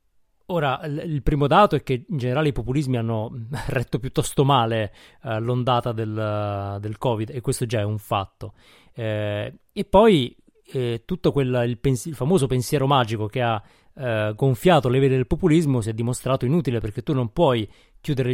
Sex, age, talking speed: male, 30-49, 170 wpm